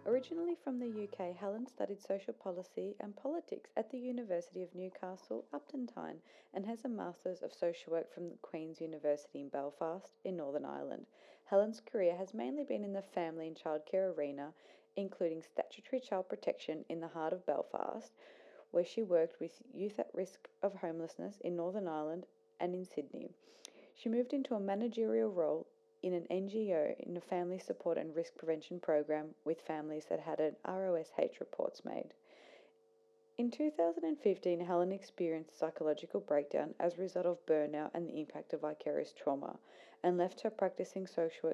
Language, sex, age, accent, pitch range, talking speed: English, female, 40-59, Australian, 165-220 Hz, 165 wpm